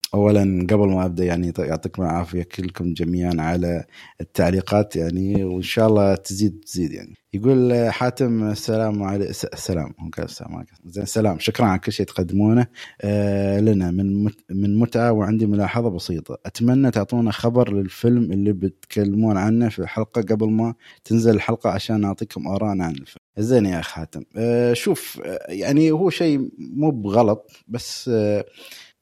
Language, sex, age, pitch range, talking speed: Arabic, male, 20-39, 100-125 Hz, 145 wpm